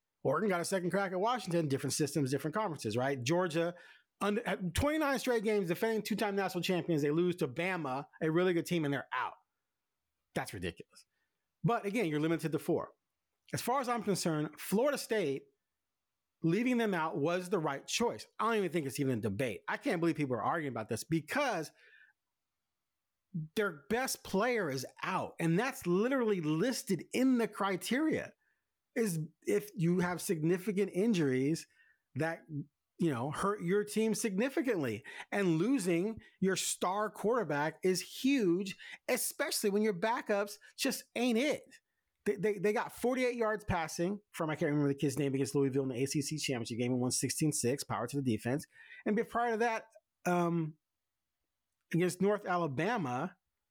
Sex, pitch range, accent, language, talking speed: male, 150-215 Hz, American, English, 165 wpm